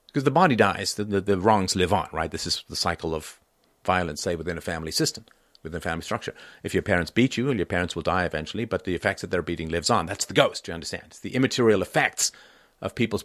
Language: English